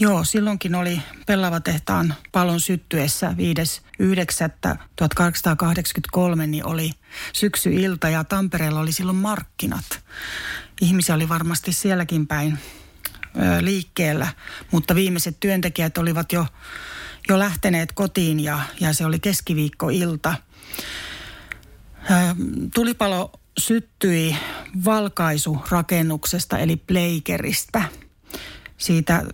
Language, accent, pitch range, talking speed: Finnish, native, 160-185 Hz, 90 wpm